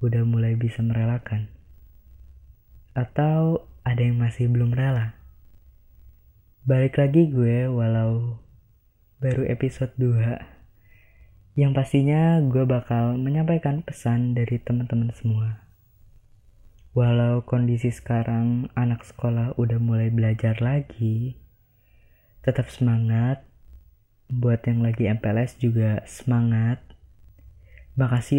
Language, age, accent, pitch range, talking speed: Indonesian, 20-39, native, 110-125 Hz, 95 wpm